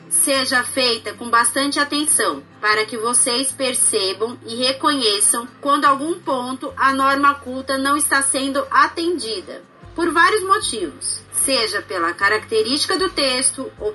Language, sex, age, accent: Portuguese, female, 30-49, Brazilian